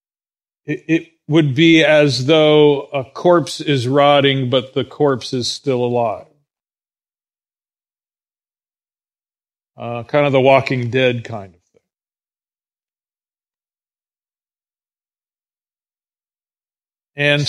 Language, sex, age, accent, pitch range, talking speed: English, male, 40-59, American, 135-155 Hz, 85 wpm